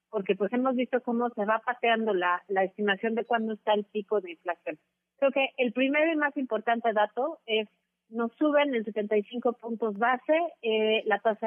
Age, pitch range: 30-49, 200-245 Hz